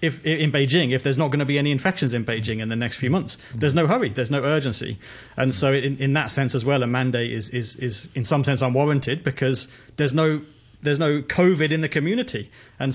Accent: British